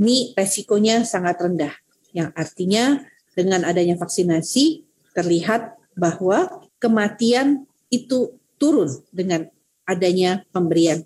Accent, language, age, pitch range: native, Indonesian, 40-59, 175-240 Hz